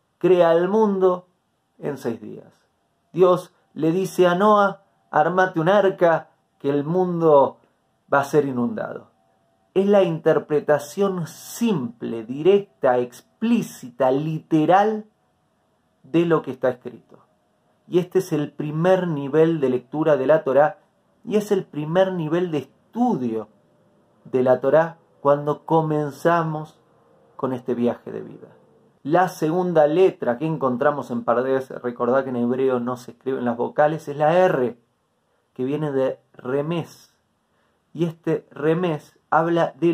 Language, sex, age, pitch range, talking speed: Spanish, male, 30-49, 130-180 Hz, 135 wpm